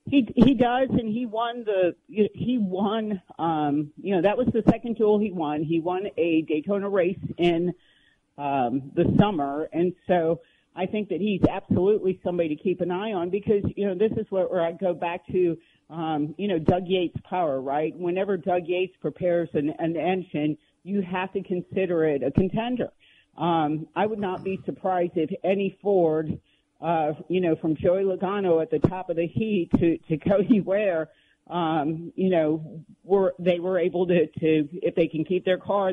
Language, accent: English, American